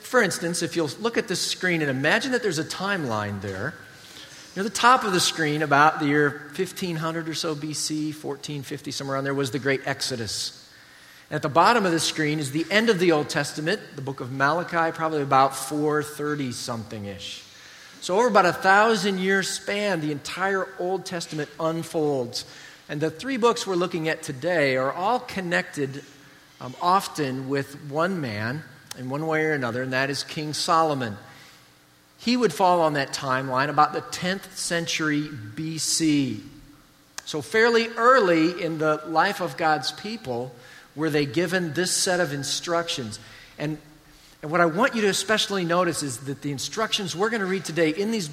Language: English